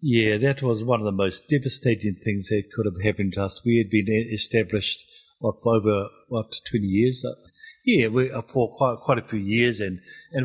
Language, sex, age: English, male, 50-69